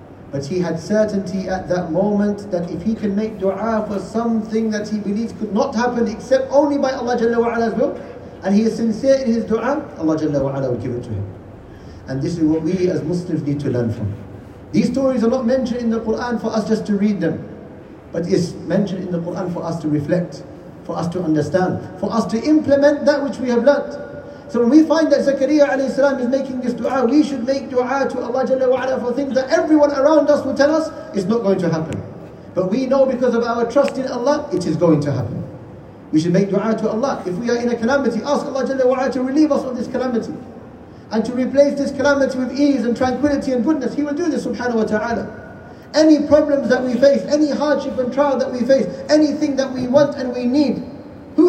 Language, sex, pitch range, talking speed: English, male, 185-270 Hz, 230 wpm